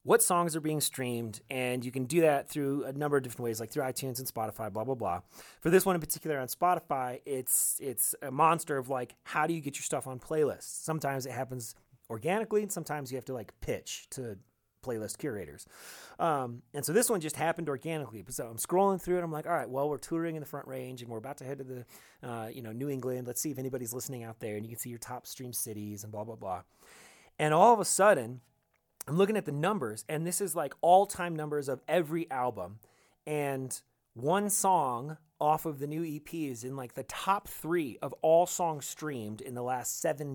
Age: 30-49